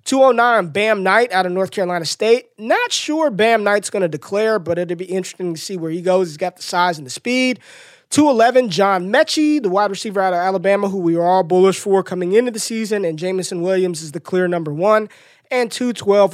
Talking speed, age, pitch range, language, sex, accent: 235 wpm, 20-39, 180-225 Hz, English, male, American